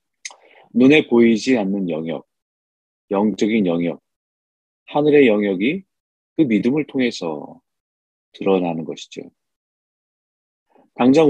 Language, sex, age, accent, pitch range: Korean, male, 40-59, native, 95-140 Hz